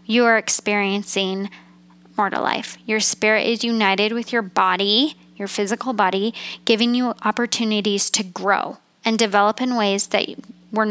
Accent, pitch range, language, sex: American, 195-225 Hz, English, female